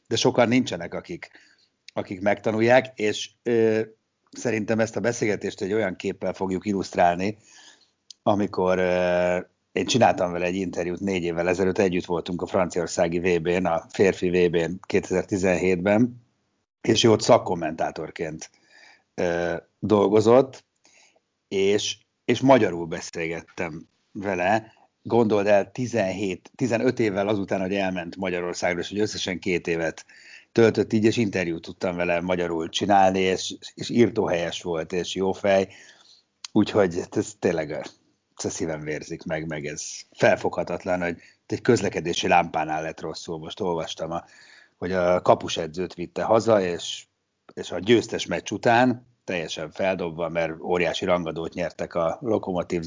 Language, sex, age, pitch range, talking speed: Hungarian, male, 50-69, 90-105 Hz, 130 wpm